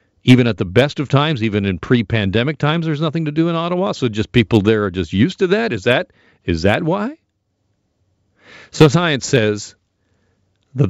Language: English